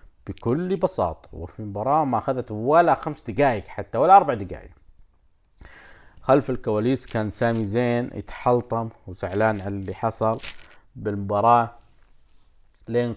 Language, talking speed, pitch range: Arabic, 115 wpm, 105-130 Hz